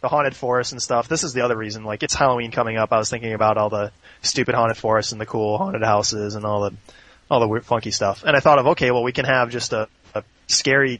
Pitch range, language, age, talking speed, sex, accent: 115-145 Hz, English, 20-39, 275 wpm, male, American